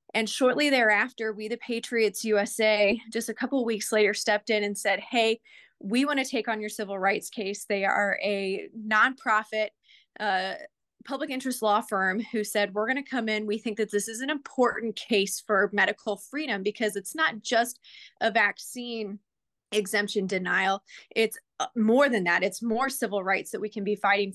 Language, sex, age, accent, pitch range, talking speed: English, female, 20-39, American, 205-235 Hz, 185 wpm